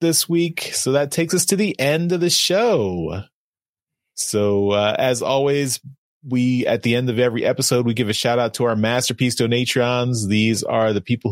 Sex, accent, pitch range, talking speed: male, American, 110-155 Hz, 190 wpm